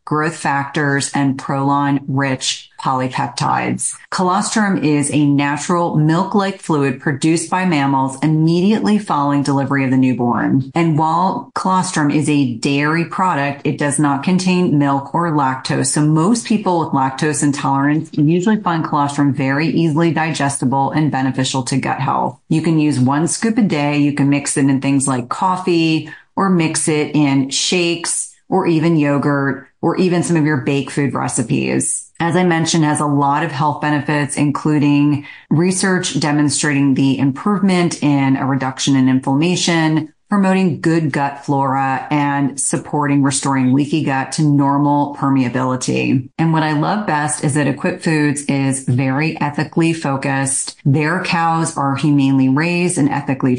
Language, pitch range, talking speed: English, 140-165 Hz, 150 wpm